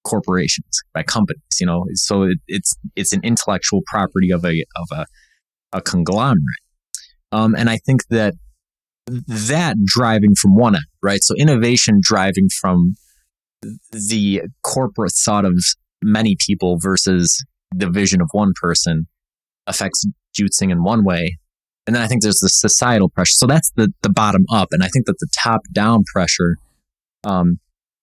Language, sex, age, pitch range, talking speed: English, male, 20-39, 90-115 Hz, 155 wpm